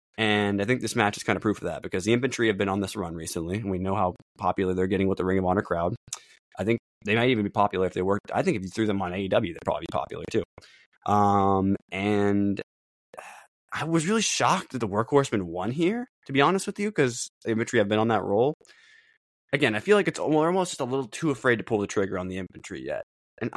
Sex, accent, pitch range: male, American, 95-130 Hz